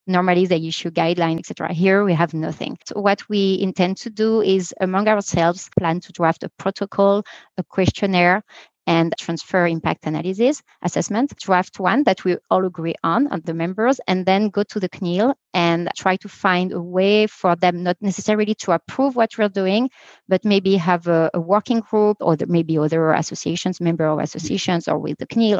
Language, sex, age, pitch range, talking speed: English, female, 30-49, 175-215 Hz, 190 wpm